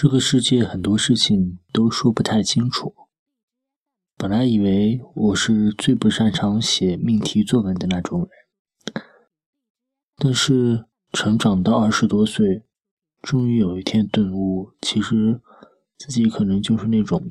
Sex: male